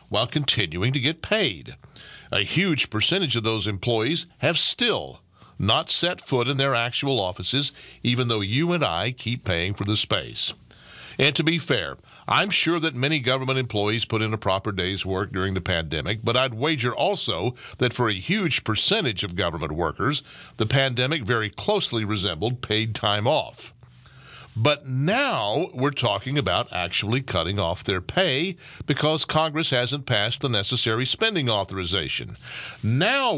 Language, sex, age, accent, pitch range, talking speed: English, male, 50-69, American, 105-145 Hz, 160 wpm